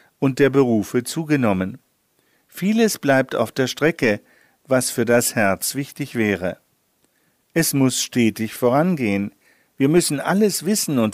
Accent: German